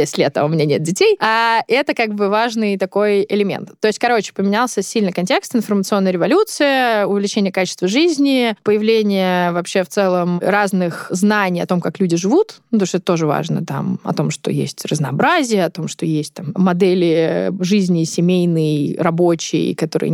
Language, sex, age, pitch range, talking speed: Russian, female, 20-39, 175-215 Hz, 165 wpm